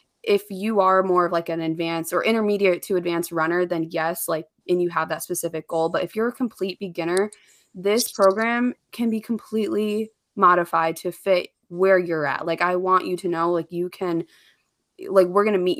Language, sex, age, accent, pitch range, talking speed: English, female, 20-39, American, 160-190 Hz, 200 wpm